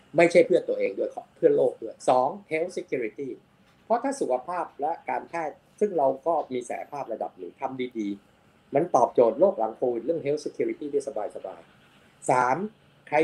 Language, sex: Thai, male